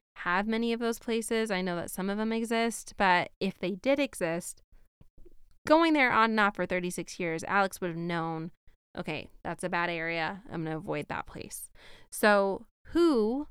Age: 20-39